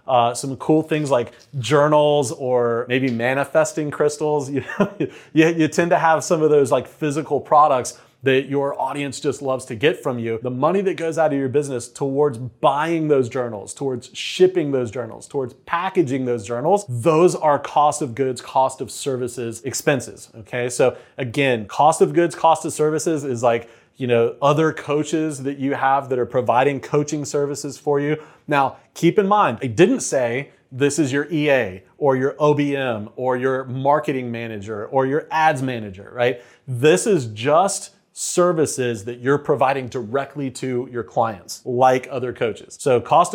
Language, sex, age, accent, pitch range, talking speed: English, male, 30-49, American, 125-155 Hz, 175 wpm